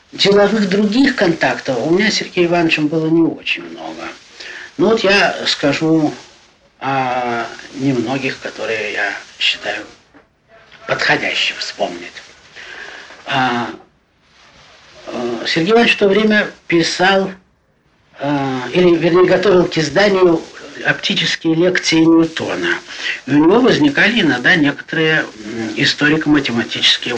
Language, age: Russian, 60-79